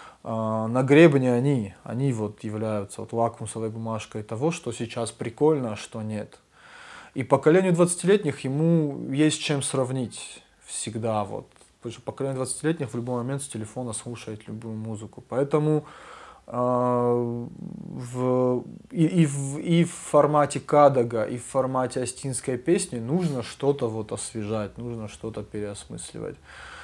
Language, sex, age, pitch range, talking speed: Russian, male, 20-39, 115-145 Hz, 125 wpm